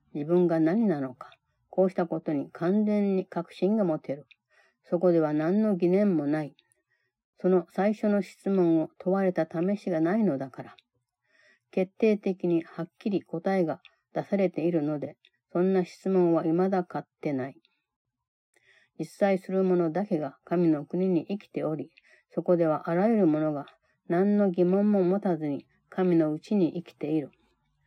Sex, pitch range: female, 160-195 Hz